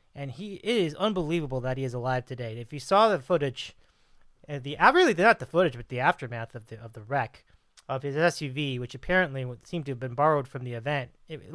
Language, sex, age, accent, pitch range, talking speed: English, male, 30-49, American, 130-175 Hz, 220 wpm